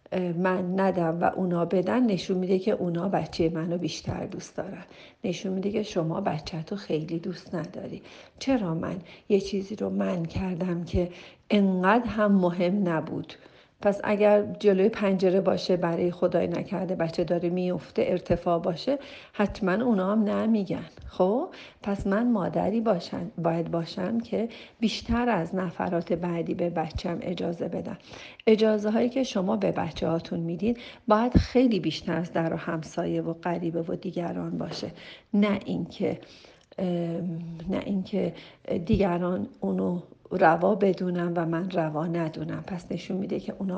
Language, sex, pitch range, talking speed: Persian, female, 170-200 Hz, 145 wpm